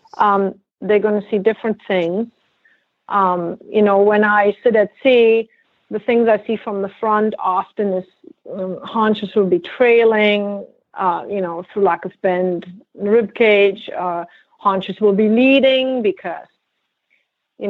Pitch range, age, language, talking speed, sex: 190-225 Hz, 40-59, English, 155 wpm, female